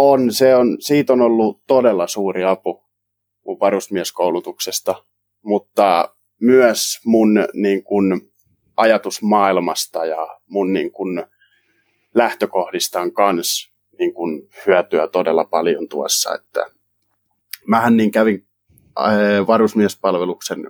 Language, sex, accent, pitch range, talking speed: Finnish, male, native, 95-110 Hz, 100 wpm